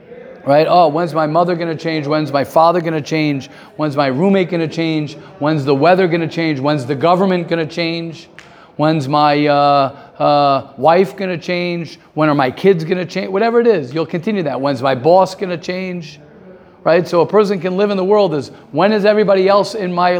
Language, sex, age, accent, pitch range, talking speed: English, male, 50-69, American, 145-190 Hz, 225 wpm